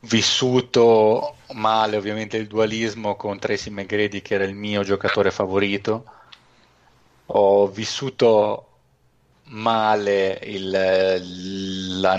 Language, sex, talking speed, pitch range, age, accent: Italian, male, 100 wpm, 100-115 Hz, 30-49, native